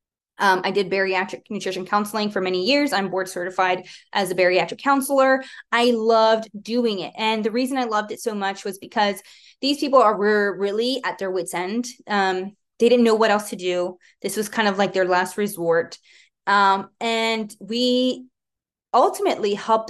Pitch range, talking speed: 185-240 Hz, 180 wpm